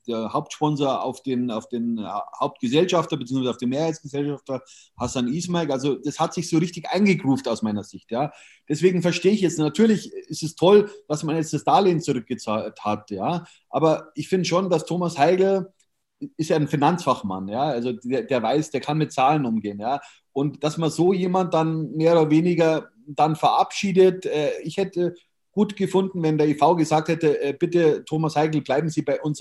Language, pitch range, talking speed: German, 140-175 Hz, 180 wpm